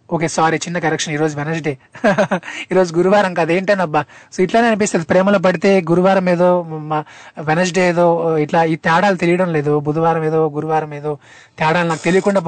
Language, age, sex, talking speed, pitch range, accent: Telugu, 20-39, male, 160 wpm, 160-190 Hz, native